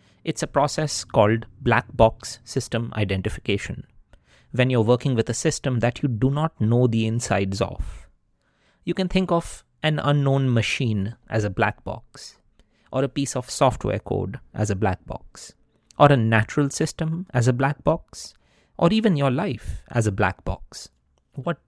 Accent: Indian